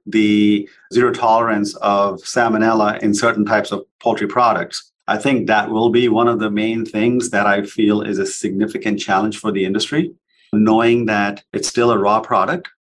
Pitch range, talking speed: 100-115 Hz, 175 wpm